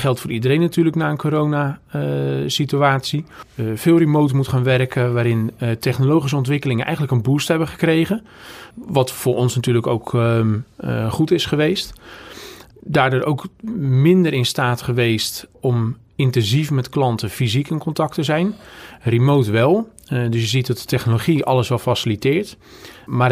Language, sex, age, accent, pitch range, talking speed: Dutch, male, 40-59, Dutch, 120-150 Hz, 155 wpm